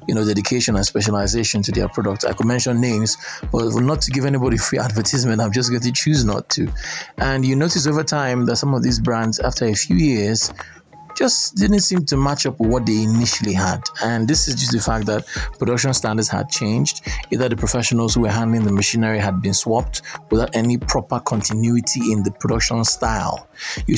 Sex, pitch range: male, 110-130 Hz